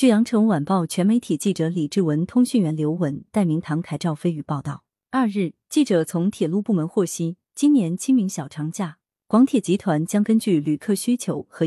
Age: 30-49